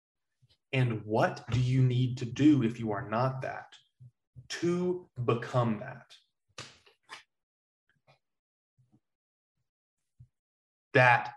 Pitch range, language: 110-130 Hz, English